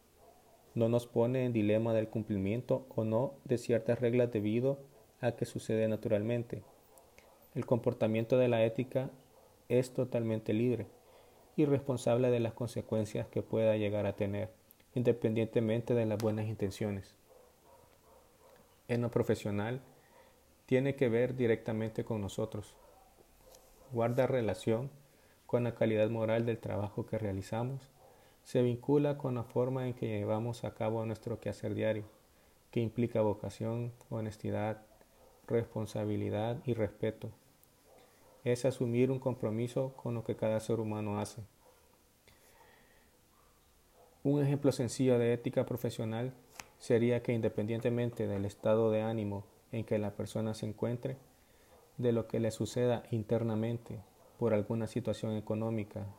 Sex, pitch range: male, 110-120 Hz